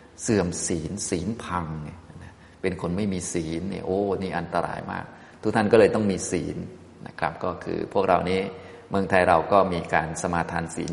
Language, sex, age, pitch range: Thai, male, 20-39, 85-105 Hz